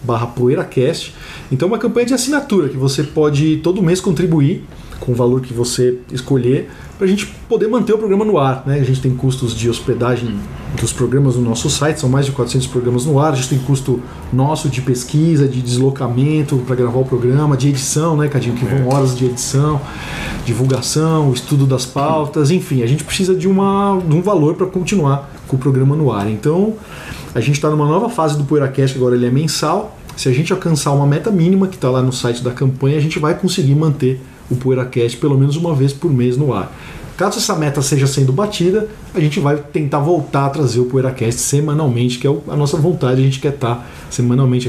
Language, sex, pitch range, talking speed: Portuguese, male, 130-160 Hz, 210 wpm